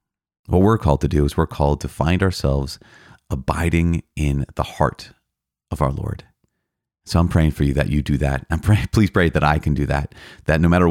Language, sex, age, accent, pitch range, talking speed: English, male, 30-49, American, 75-85 Hz, 215 wpm